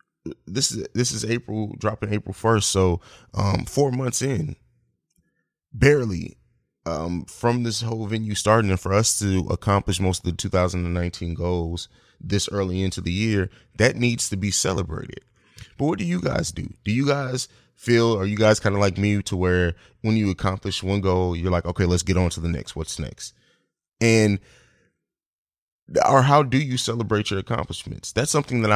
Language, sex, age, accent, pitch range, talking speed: English, male, 20-39, American, 90-110 Hz, 180 wpm